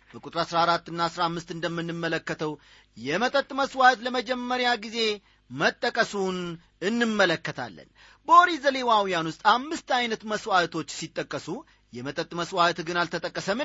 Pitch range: 165-225 Hz